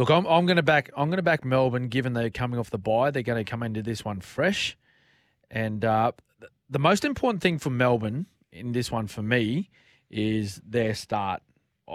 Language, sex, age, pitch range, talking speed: English, male, 20-39, 110-140 Hz, 215 wpm